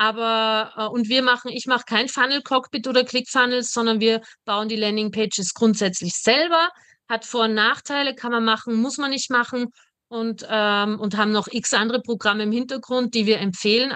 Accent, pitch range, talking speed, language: German, 220-275 Hz, 180 wpm, German